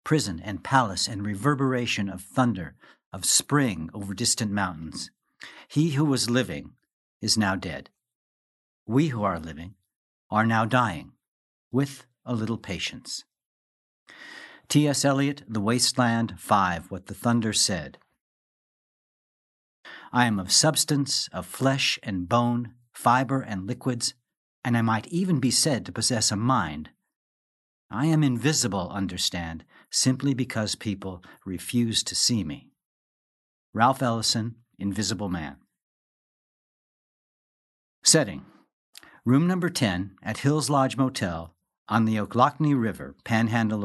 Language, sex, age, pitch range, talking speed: English, male, 60-79, 100-130 Hz, 120 wpm